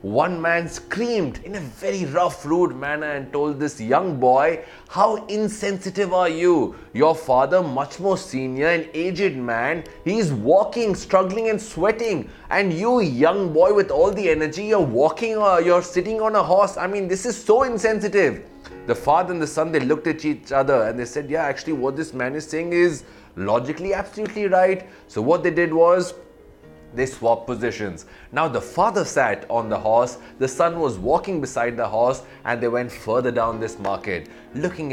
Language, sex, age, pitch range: English, male, 30-49, 145-195 Hz